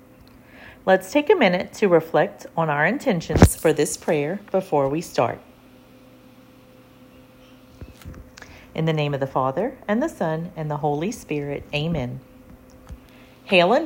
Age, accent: 40-59, American